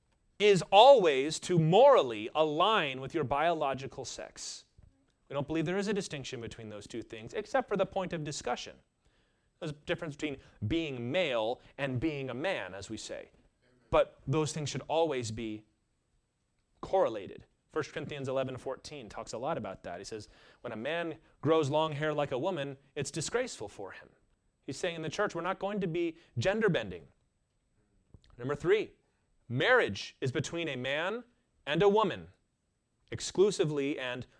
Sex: male